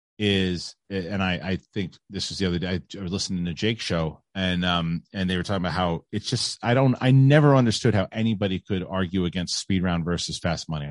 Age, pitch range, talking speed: 30-49, 90-120 Hz, 225 wpm